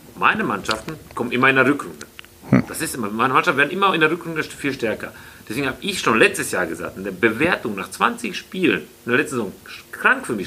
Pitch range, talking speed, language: 110-135 Hz, 225 wpm, German